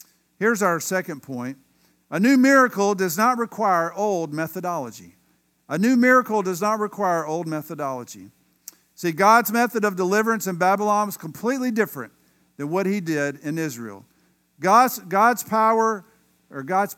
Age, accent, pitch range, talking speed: 50-69, American, 155-225 Hz, 145 wpm